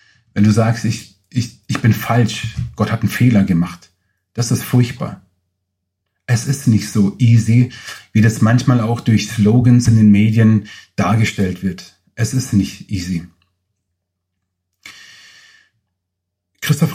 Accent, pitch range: German, 100-130 Hz